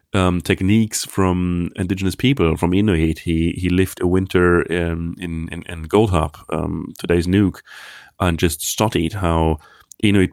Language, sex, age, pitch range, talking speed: English, male, 30-49, 85-100 Hz, 140 wpm